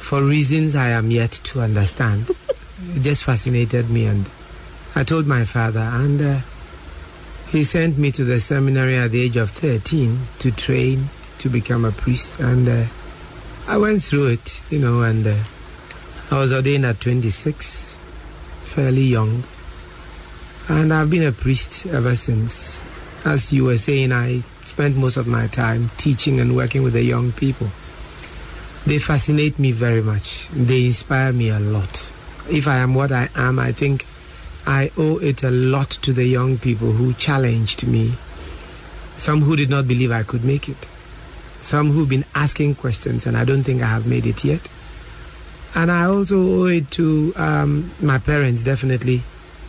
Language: English